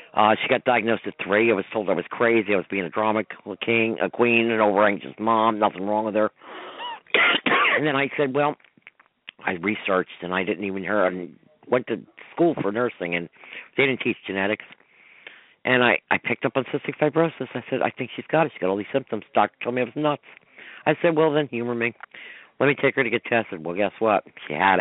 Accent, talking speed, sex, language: American, 230 wpm, male, English